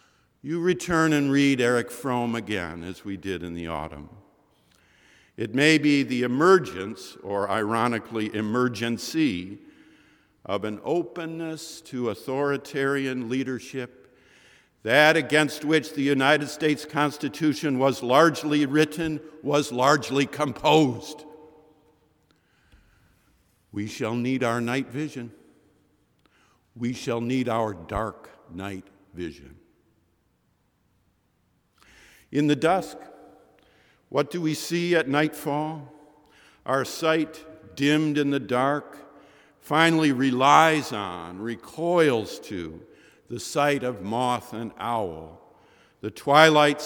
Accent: American